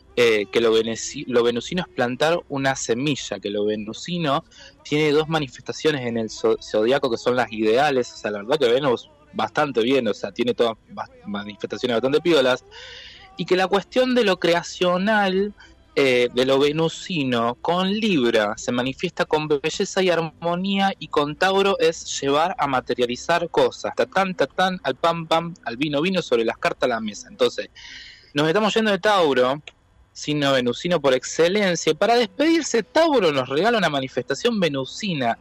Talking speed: 165 wpm